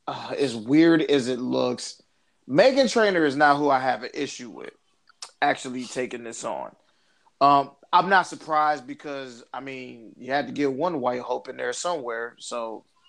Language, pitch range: English, 130-170 Hz